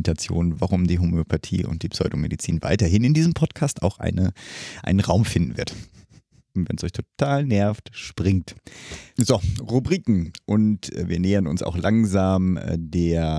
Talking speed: 135 wpm